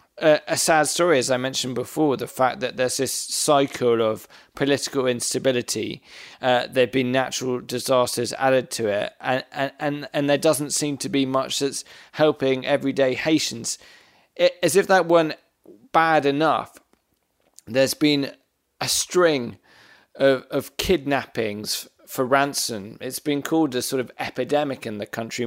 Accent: British